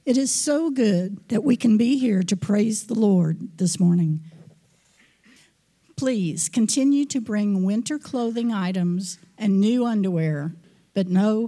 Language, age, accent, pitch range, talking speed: English, 50-69, American, 175-225 Hz, 140 wpm